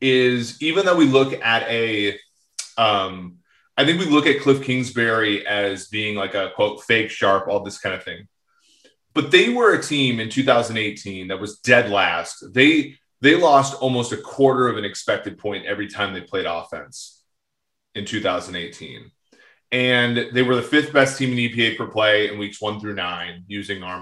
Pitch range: 105-135 Hz